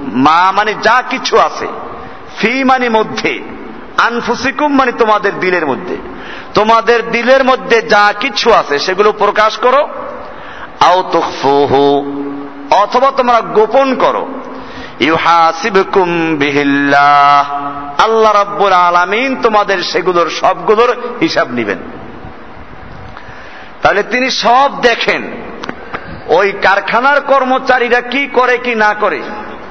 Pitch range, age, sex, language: 160-245 Hz, 50-69, male, Bengali